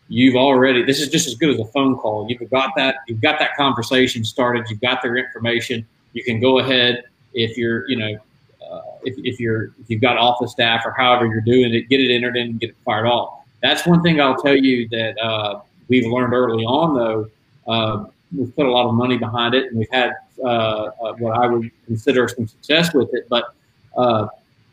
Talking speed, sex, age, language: 220 wpm, male, 40-59, English